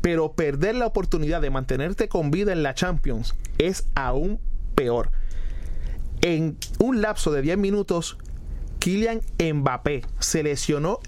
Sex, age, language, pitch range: male, 30-49, Spanish, 145-195 Hz